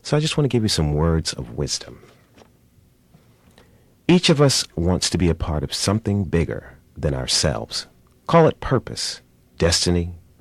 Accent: American